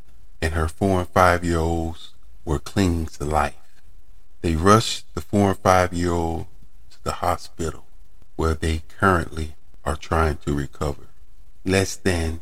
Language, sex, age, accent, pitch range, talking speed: English, male, 40-59, American, 80-95 Hz, 125 wpm